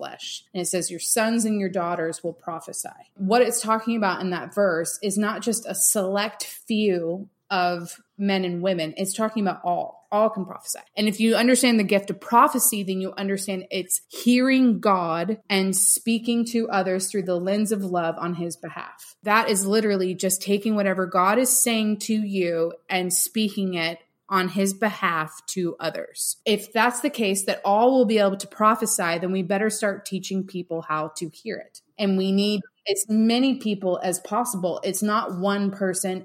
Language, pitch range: English, 185-220 Hz